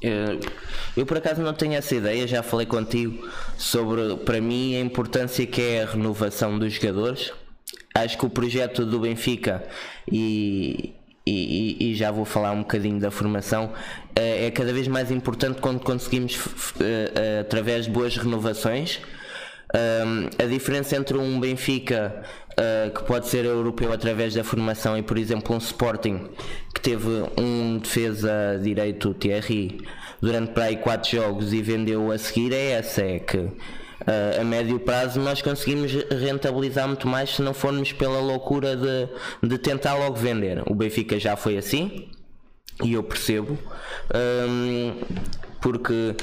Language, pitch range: Portuguese, 110-130 Hz